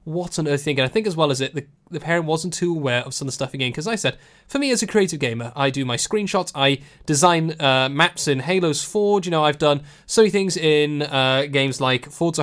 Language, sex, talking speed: English, male, 270 wpm